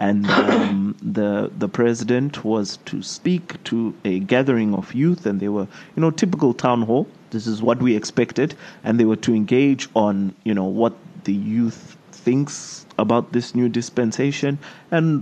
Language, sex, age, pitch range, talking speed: English, male, 30-49, 110-135 Hz, 170 wpm